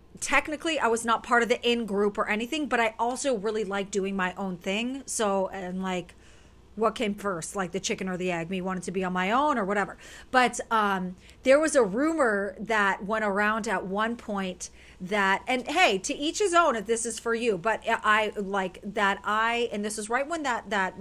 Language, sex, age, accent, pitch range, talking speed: English, female, 40-59, American, 195-240 Hz, 220 wpm